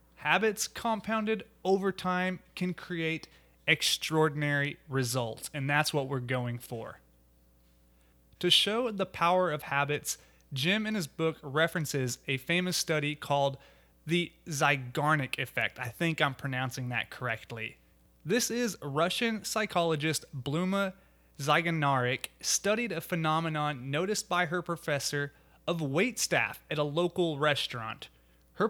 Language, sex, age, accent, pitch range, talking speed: English, male, 30-49, American, 140-200 Hz, 120 wpm